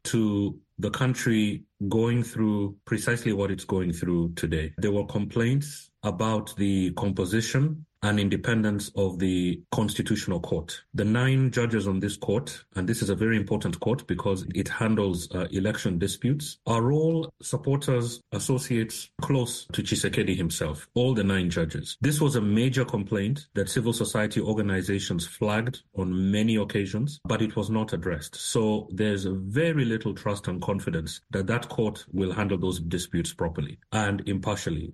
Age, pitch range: 30-49, 100-125 Hz